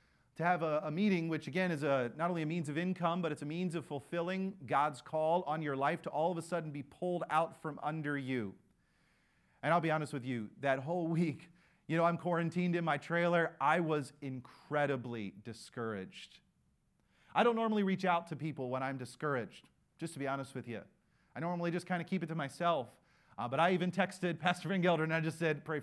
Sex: male